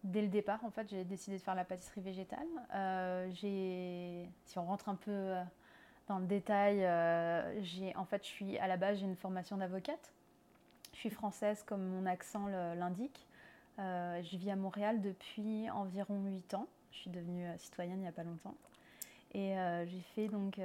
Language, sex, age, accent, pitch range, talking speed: French, female, 20-39, French, 180-205 Hz, 190 wpm